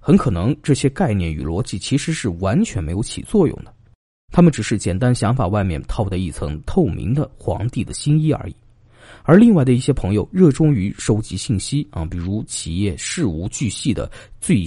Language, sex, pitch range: Chinese, male, 100-145 Hz